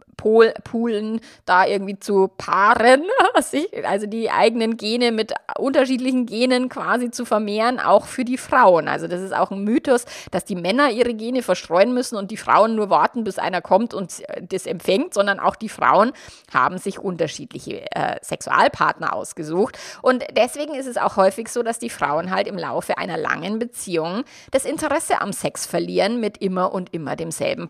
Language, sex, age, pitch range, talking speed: German, female, 30-49, 190-250 Hz, 170 wpm